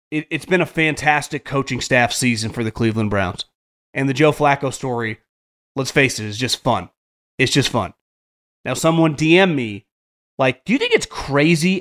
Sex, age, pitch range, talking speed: male, 30-49, 125-165 Hz, 185 wpm